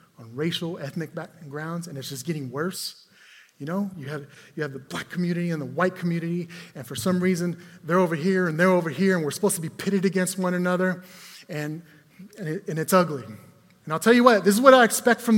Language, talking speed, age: English, 230 wpm, 30-49